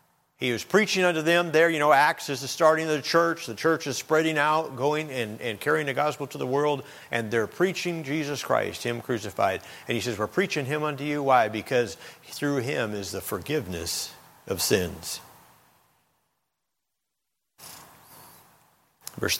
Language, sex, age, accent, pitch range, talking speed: English, male, 50-69, American, 115-150 Hz, 165 wpm